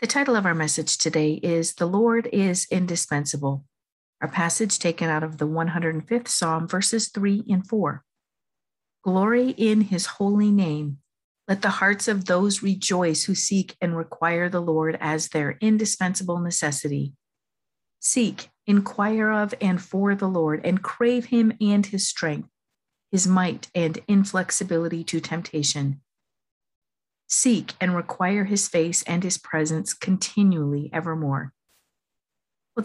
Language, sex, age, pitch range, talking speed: English, female, 50-69, 155-195 Hz, 135 wpm